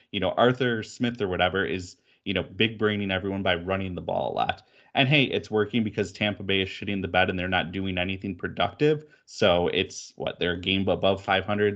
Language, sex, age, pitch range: English, male, 20-39, 90-110 Hz